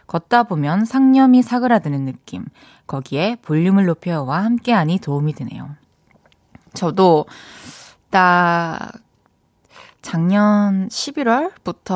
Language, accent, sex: Korean, native, female